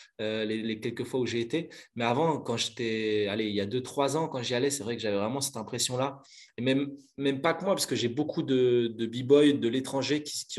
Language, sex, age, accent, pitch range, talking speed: French, male, 20-39, French, 115-145 Hz, 260 wpm